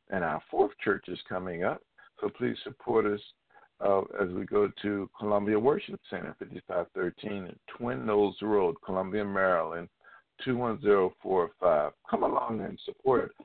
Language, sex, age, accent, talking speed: English, male, 50-69, American, 135 wpm